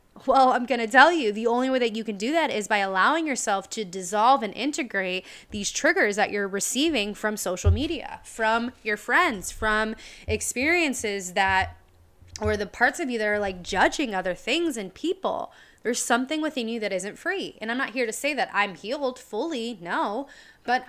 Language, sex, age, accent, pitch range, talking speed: English, female, 20-39, American, 195-255 Hz, 195 wpm